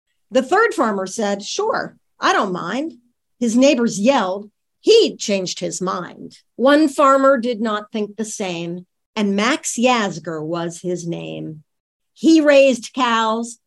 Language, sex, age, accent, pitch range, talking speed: English, female, 50-69, American, 190-270 Hz, 135 wpm